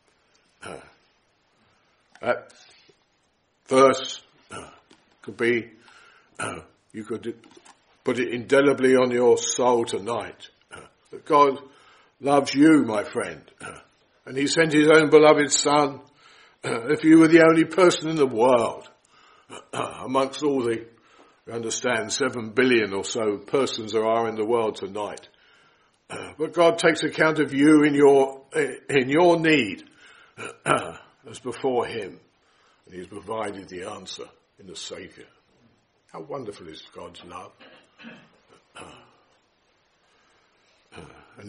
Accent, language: British, English